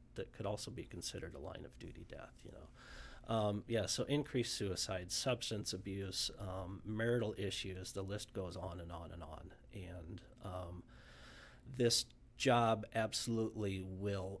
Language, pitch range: English, 100-120 Hz